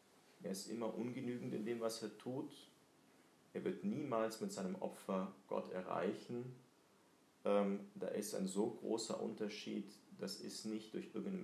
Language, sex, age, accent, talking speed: German, male, 40-59, German, 145 wpm